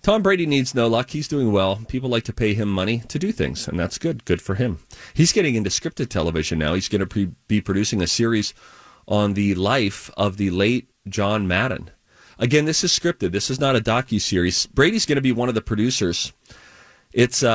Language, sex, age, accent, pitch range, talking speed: English, male, 30-49, American, 95-120 Hz, 215 wpm